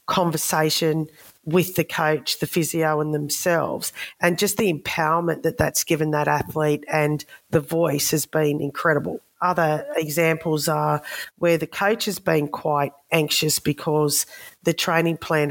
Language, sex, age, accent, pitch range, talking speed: English, female, 40-59, Australian, 155-175 Hz, 145 wpm